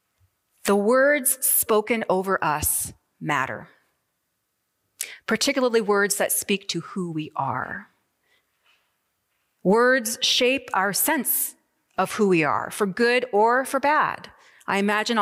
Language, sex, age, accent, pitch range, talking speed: English, female, 30-49, American, 180-240 Hz, 115 wpm